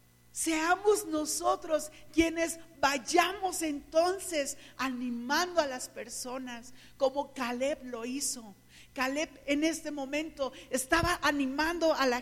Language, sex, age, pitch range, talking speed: Spanish, female, 50-69, 280-350 Hz, 105 wpm